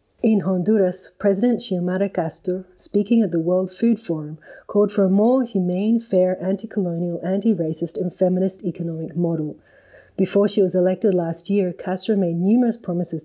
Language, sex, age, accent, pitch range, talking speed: English, female, 40-59, Australian, 175-205 Hz, 150 wpm